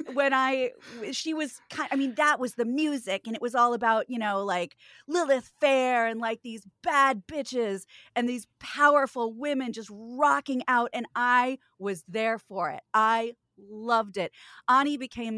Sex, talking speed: female, 170 wpm